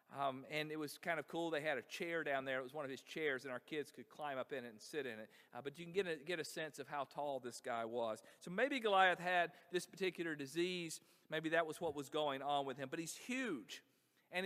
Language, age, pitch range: English, 50-69, 150-210 Hz